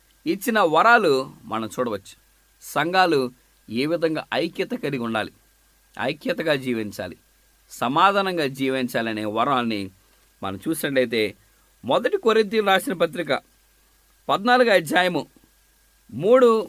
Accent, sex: Indian, male